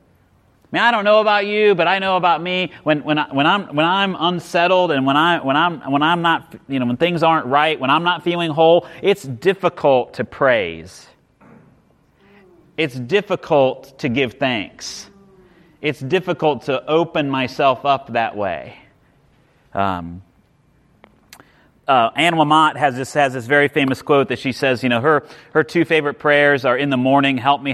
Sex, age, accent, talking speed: male, 30-49, American, 180 wpm